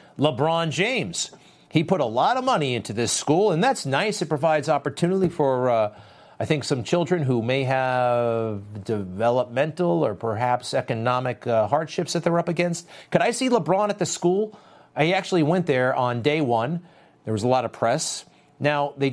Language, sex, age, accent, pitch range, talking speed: English, male, 40-59, American, 115-155 Hz, 180 wpm